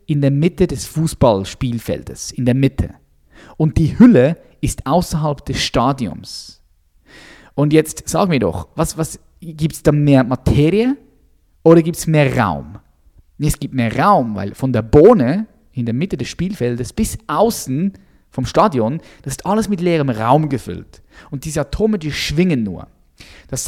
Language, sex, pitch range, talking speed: German, male, 125-180 Hz, 160 wpm